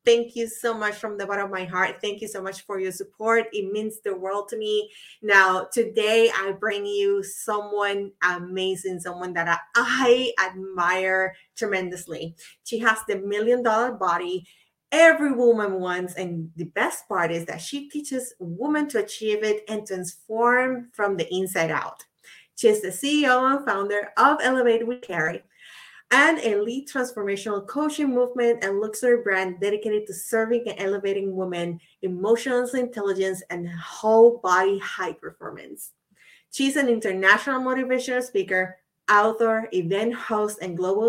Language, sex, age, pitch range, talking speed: English, female, 30-49, 190-240 Hz, 150 wpm